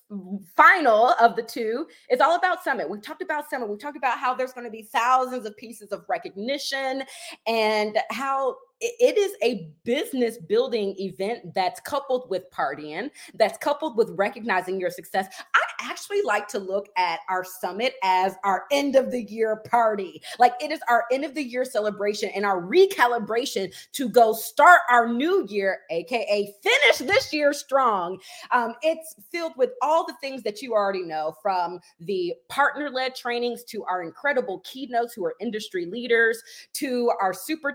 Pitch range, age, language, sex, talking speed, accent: 200-280 Hz, 30-49, English, female, 170 wpm, American